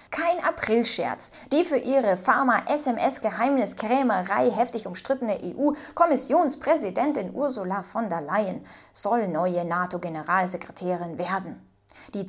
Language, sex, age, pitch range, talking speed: German, female, 20-39, 190-260 Hz, 105 wpm